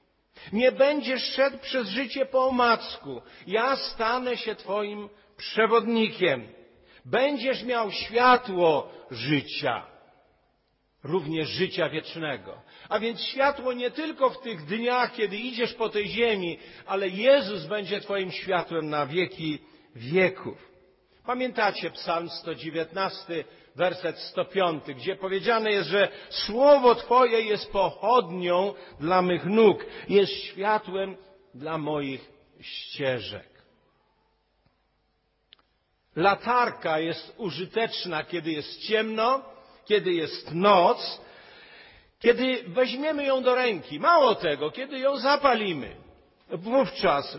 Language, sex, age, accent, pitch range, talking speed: Polish, male, 50-69, native, 175-245 Hz, 105 wpm